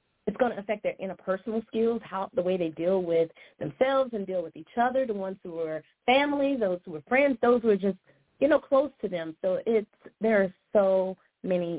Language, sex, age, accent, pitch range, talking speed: English, female, 30-49, American, 175-225 Hz, 220 wpm